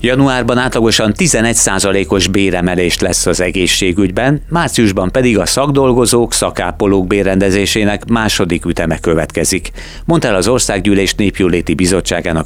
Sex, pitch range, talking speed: male, 85-110 Hz, 105 wpm